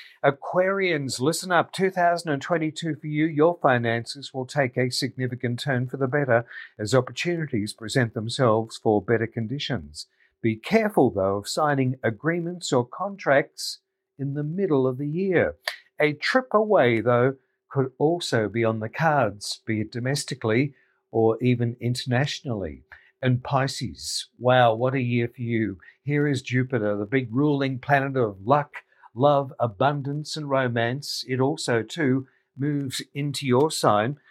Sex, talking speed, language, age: male, 140 wpm, English, 50-69